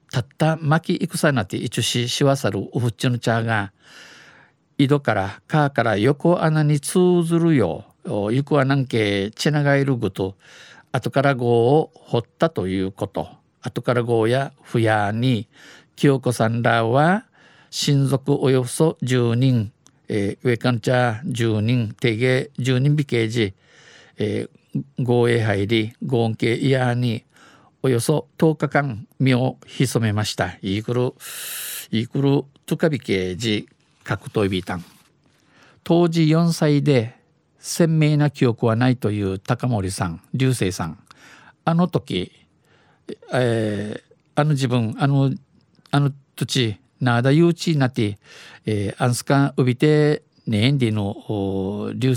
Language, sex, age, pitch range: Japanese, male, 50-69, 110-145 Hz